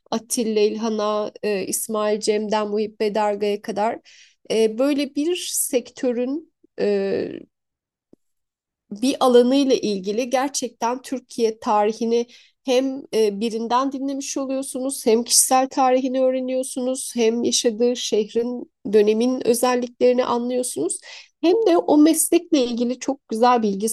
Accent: native